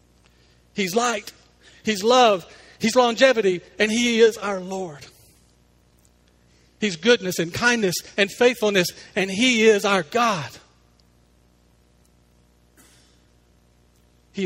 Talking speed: 95 wpm